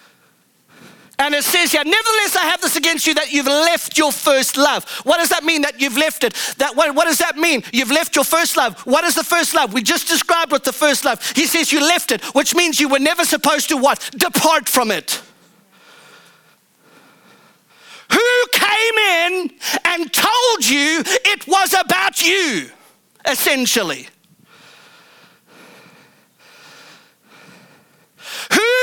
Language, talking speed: English, 155 wpm